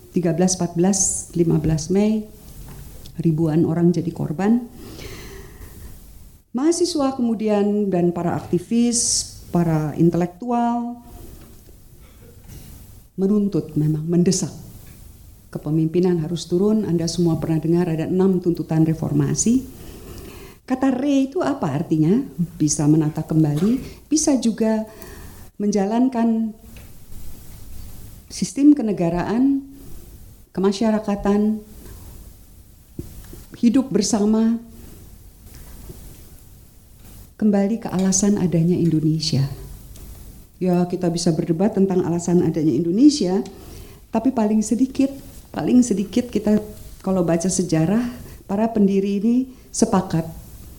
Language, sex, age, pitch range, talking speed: Indonesian, female, 50-69, 155-215 Hz, 85 wpm